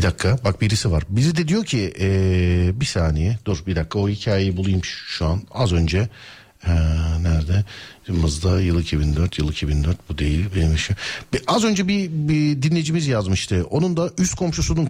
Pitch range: 95-155 Hz